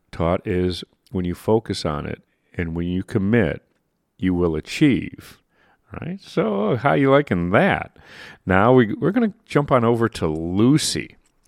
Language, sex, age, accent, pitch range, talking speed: English, male, 40-59, American, 85-125 Hz, 160 wpm